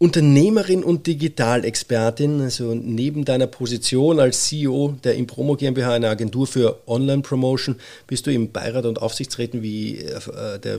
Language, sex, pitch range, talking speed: German, male, 115-145 Hz, 135 wpm